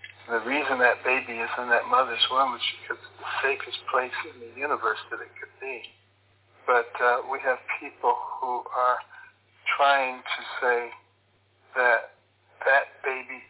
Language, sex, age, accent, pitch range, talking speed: English, male, 60-79, American, 115-135 Hz, 155 wpm